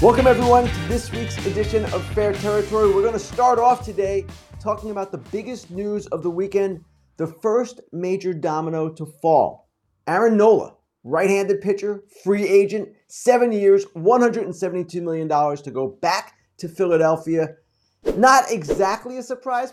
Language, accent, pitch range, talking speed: English, American, 155-215 Hz, 145 wpm